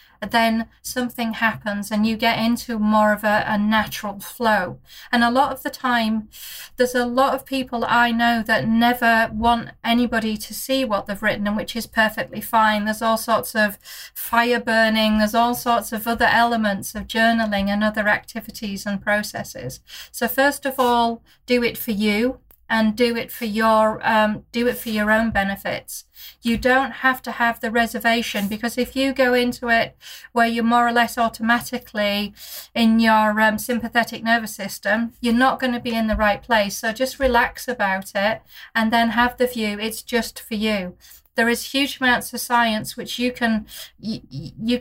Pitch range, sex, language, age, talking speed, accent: 215-240 Hz, female, English, 40-59, 185 wpm, British